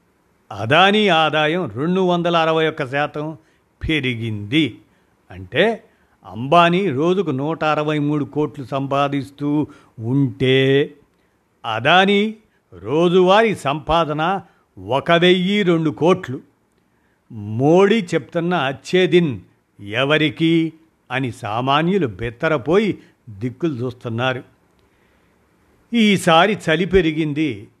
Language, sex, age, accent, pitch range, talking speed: Telugu, male, 50-69, native, 130-170 Hz, 80 wpm